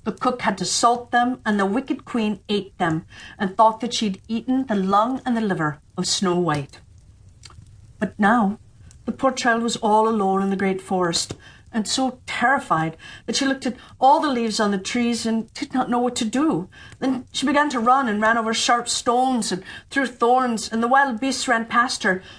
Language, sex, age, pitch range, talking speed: English, female, 50-69, 180-245 Hz, 205 wpm